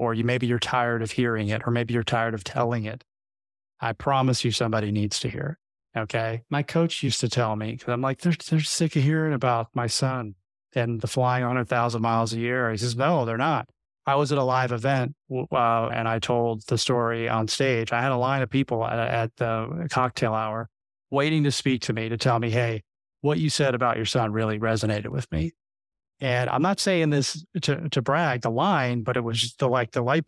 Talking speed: 230 wpm